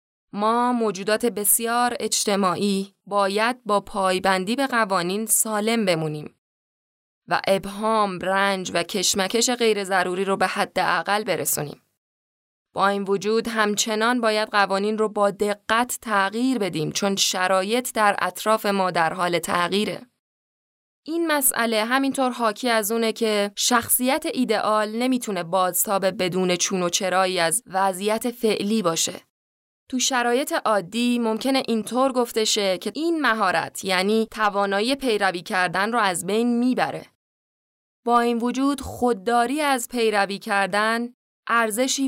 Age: 20-39